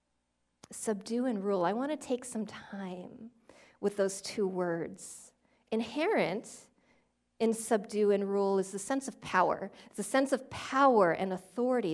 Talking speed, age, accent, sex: 150 wpm, 40-59, American, female